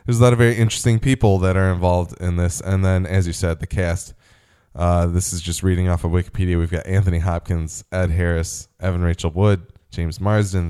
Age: 10-29